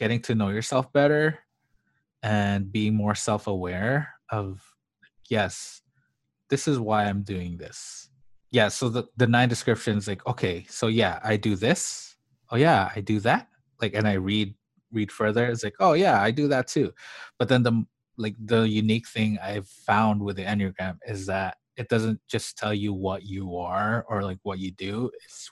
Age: 20-39